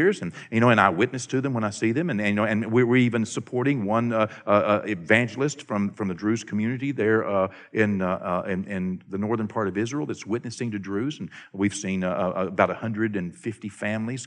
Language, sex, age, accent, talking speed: English, male, 50-69, American, 225 wpm